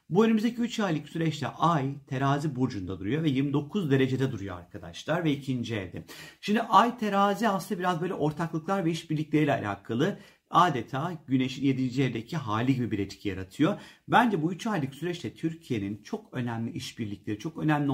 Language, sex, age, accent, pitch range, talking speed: Turkish, male, 40-59, native, 120-170 Hz, 155 wpm